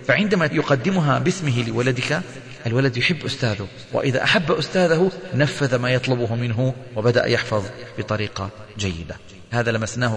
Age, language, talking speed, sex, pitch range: 40-59, Arabic, 120 wpm, male, 115-145 Hz